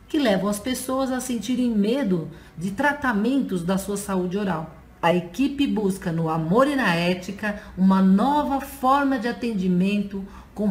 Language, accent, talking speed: Portuguese, Brazilian, 150 wpm